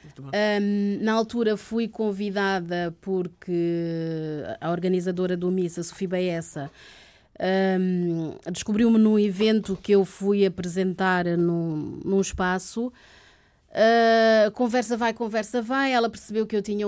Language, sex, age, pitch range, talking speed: Portuguese, female, 30-49, 190-230 Hz, 115 wpm